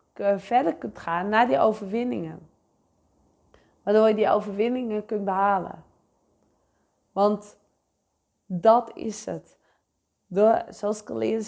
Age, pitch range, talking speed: 20-39, 200-235 Hz, 105 wpm